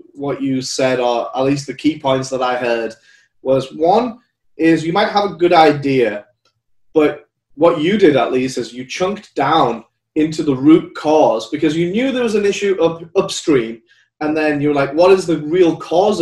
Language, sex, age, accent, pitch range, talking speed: English, male, 30-49, British, 130-165 Hz, 200 wpm